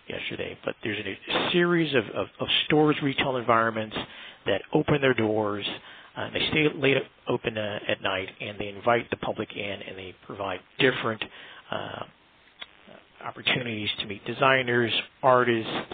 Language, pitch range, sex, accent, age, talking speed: English, 105-135 Hz, male, American, 50-69, 150 wpm